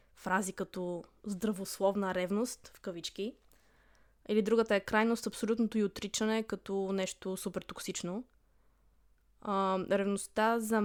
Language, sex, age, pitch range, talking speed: Bulgarian, female, 20-39, 195-220 Hz, 110 wpm